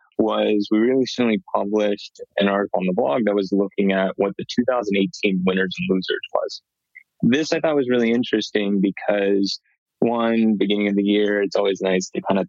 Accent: American